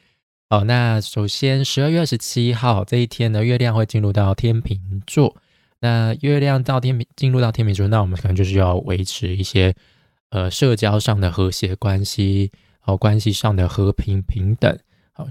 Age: 20-39